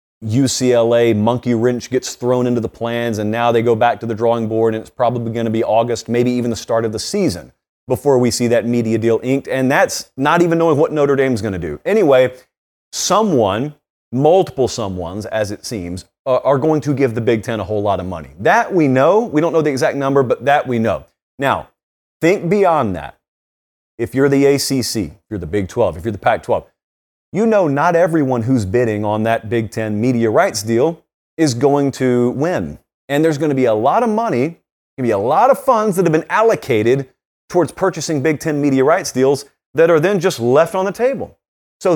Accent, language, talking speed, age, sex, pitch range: American, English, 220 wpm, 30-49, male, 115-155 Hz